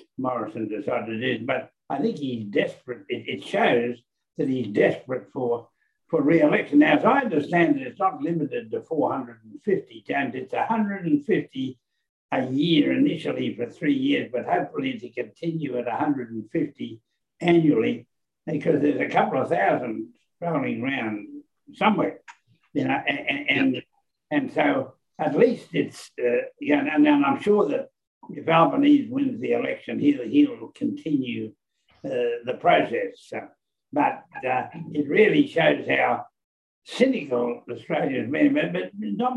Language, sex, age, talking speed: English, male, 60-79, 135 wpm